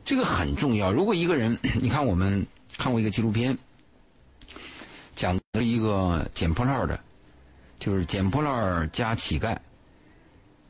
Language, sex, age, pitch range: Chinese, male, 50-69, 85-110 Hz